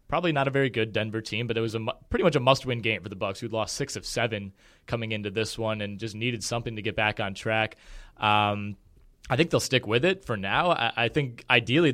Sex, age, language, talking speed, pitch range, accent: male, 20-39, English, 250 wpm, 110-125 Hz, American